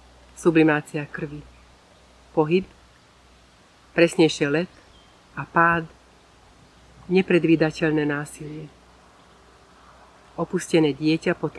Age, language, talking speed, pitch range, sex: 40-59, Slovak, 60 wpm, 145-170 Hz, female